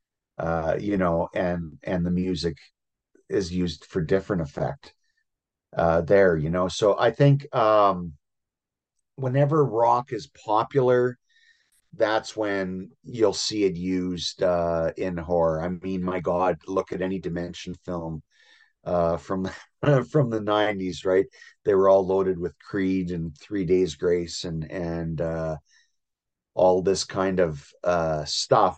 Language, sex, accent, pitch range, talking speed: English, male, American, 85-105 Hz, 140 wpm